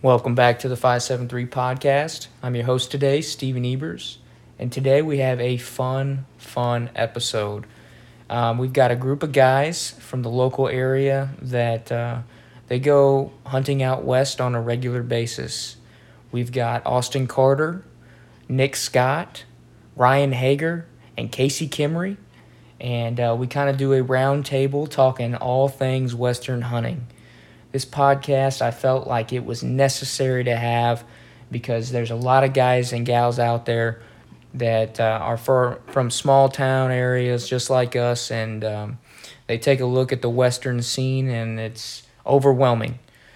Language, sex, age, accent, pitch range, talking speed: English, male, 20-39, American, 120-135 Hz, 150 wpm